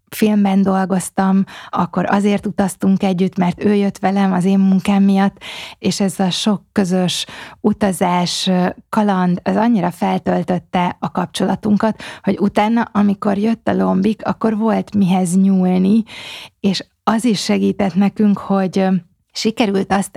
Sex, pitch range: female, 185-205 Hz